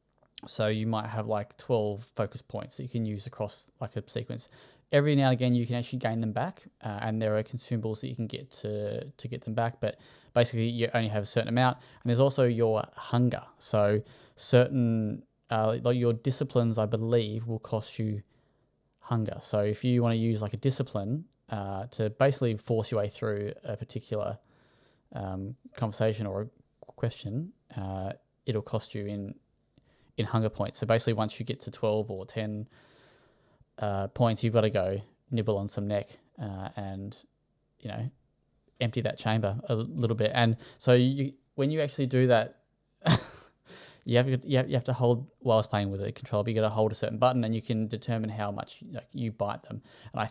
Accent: Australian